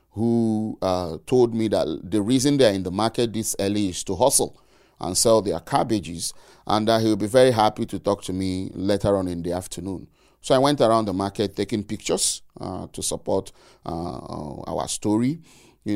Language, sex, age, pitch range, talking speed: English, male, 30-49, 100-150 Hz, 190 wpm